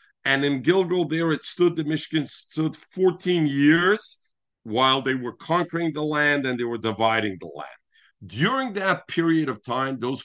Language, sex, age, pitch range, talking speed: English, male, 50-69, 120-160 Hz, 170 wpm